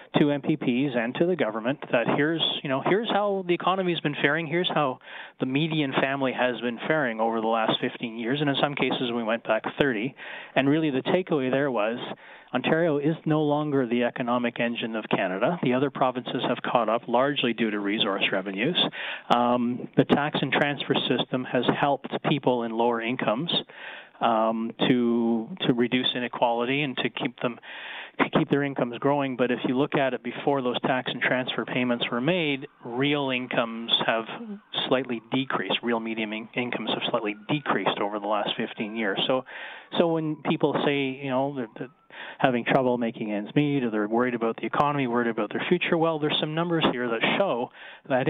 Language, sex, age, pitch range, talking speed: English, male, 30-49, 120-150 Hz, 190 wpm